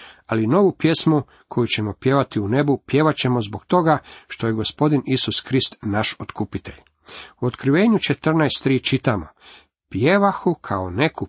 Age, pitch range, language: 50-69, 110-155 Hz, Croatian